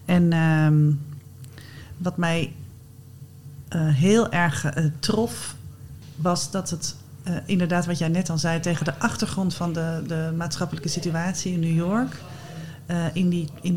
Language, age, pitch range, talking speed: Dutch, 40-59, 145-175 Hz, 140 wpm